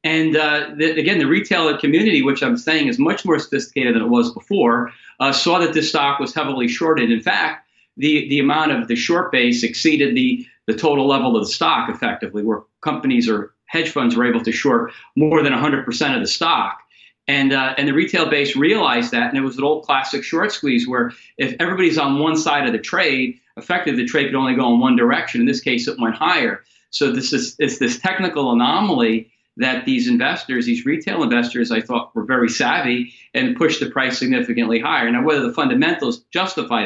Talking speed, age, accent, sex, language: 210 wpm, 40-59, American, male, English